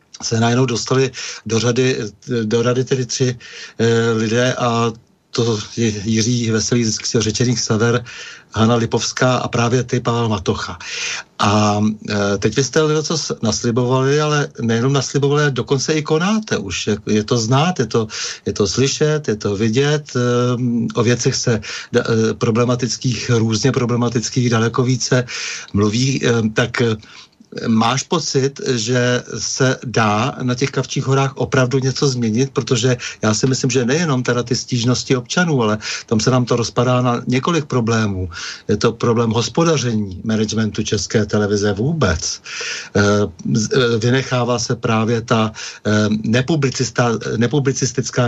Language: Czech